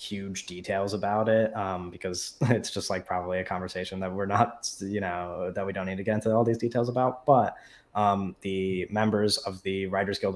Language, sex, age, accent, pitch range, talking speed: English, male, 20-39, American, 95-110 Hz, 210 wpm